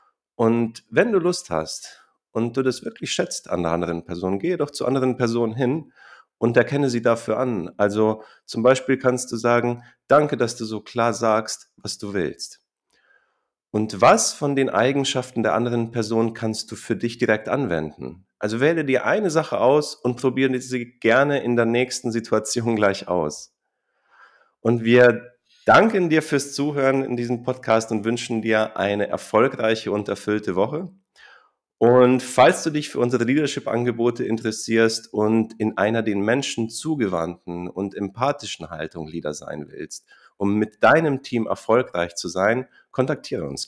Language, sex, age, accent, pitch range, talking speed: German, male, 40-59, German, 105-125 Hz, 160 wpm